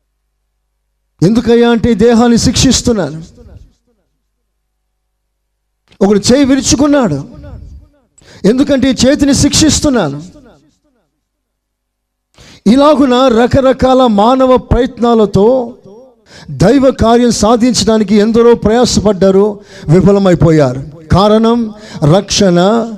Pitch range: 160-215 Hz